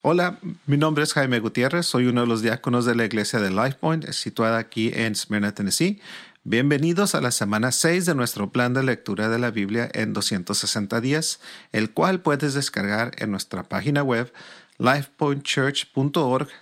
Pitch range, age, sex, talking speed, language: 105-140 Hz, 40-59, male, 165 wpm, Spanish